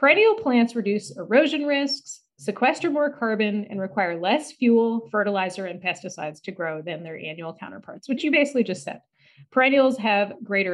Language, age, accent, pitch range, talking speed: English, 30-49, American, 190-250 Hz, 160 wpm